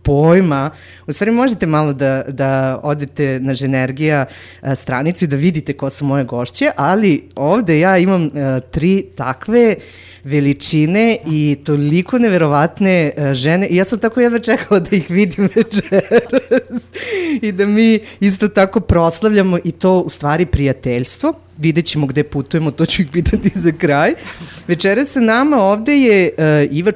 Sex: female